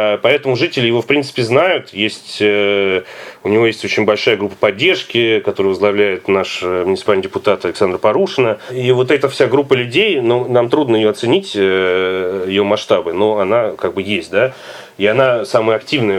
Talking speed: 165 wpm